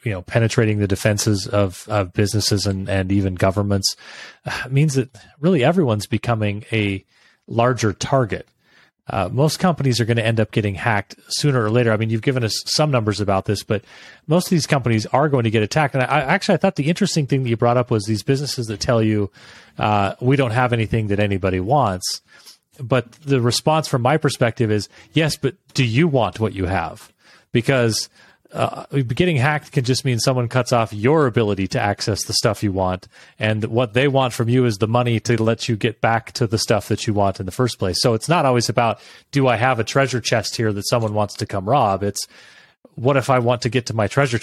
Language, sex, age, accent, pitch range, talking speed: English, male, 30-49, American, 105-130 Hz, 225 wpm